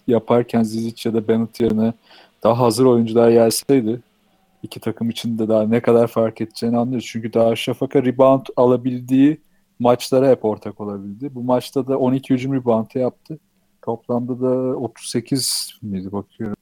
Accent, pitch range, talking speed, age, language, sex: native, 115-140 Hz, 135 wpm, 40-59, Turkish, male